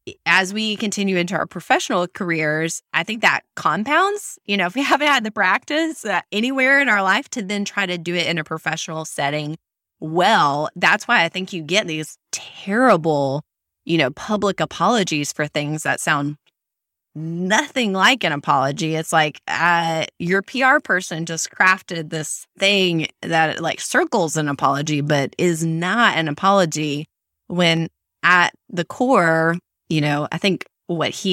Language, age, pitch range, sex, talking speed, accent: English, 20-39, 155-200 Hz, female, 160 wpm, American